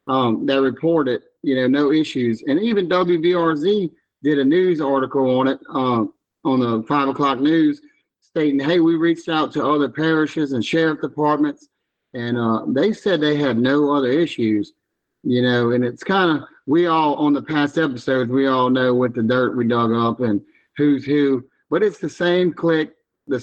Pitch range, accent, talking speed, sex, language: 125-155 Hz, American, 185 wpm, male, English